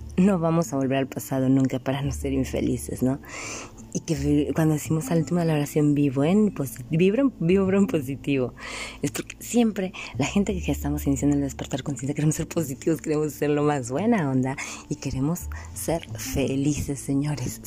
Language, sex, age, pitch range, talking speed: Spanish, female, 20-39, 130-170 Hz, 185 wpm